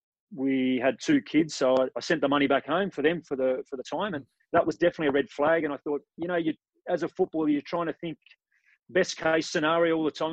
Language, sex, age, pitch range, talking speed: English, male, 30-49, 130-155 Hz, 255 wpm